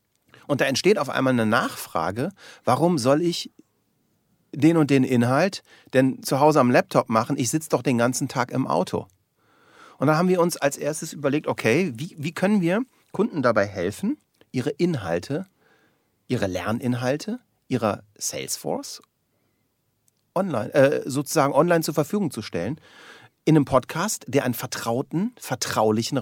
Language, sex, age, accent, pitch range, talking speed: German, male, 40-59, German, 115-150 Hz, 145 wpm